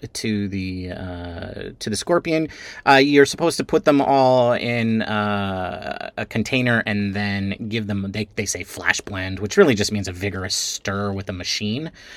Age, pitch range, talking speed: 30-49, 100-155 Hz, 180 wpm